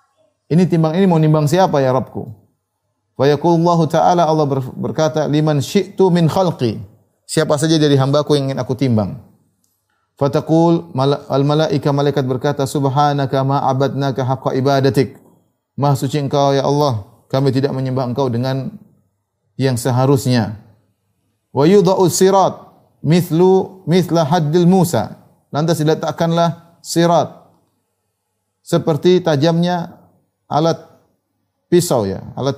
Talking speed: 110 wpm